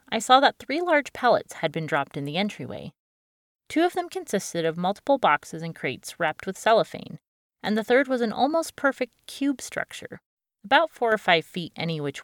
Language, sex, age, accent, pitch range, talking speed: English, female, 30-49, American, 165-245 Hz, 195 wpm